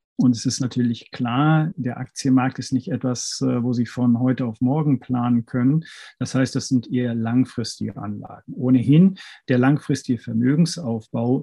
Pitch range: 120-135 Hz